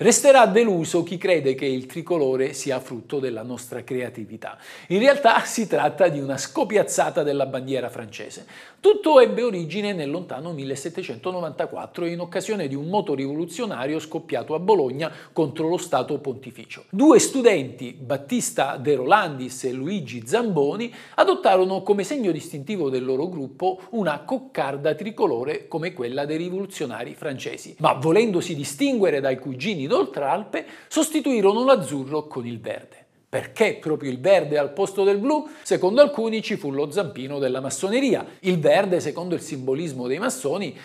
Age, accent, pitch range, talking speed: 50-69, native, 135-225 Hz, 145 wpm